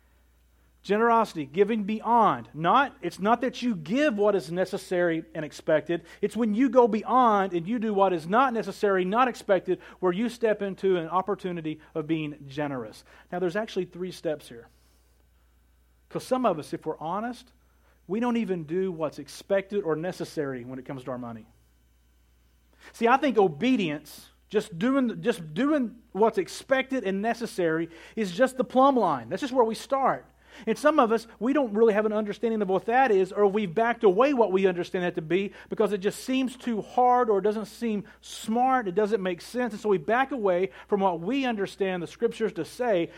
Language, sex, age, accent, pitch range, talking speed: English, male, 40-59, American, 170-235 Hz, 190 wpm